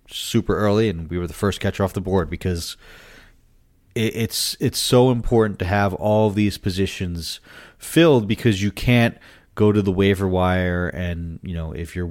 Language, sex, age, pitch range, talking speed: English, male, 30-49, 85-100 Hz, 175 wpm